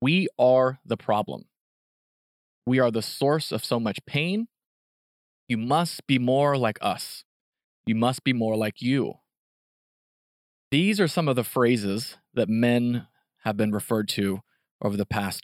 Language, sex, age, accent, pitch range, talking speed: English, male, 30-49, American, 105-135 Hz, 150 wpm